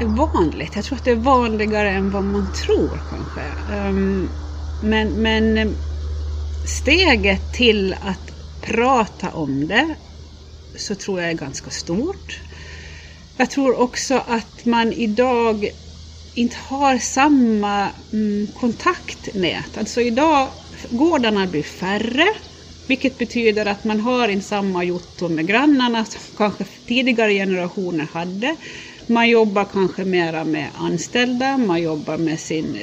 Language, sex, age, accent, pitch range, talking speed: Swedish, female, 30-49, native, 160-235 Hz, 125 wpm